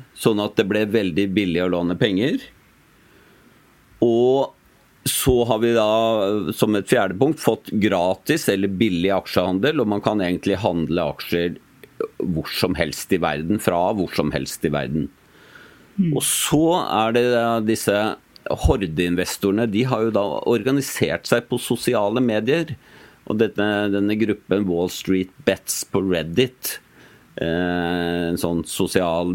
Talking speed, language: 140 wpm, English